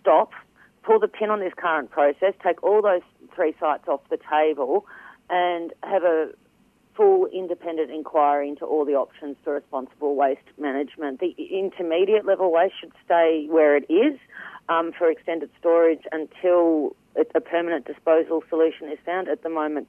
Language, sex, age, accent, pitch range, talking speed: English, female, 40-59, Australian, 145-175 Hz, 160 wpm